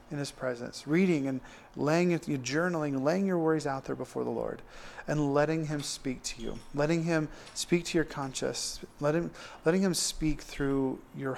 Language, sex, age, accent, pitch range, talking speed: English, male, 40-59, American, 130-160 Hz, 180 wpm